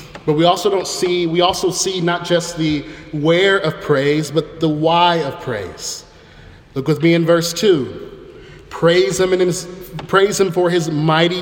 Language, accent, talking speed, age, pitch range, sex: English, American, 175 wpm, 30-49, 155-180 Hz, male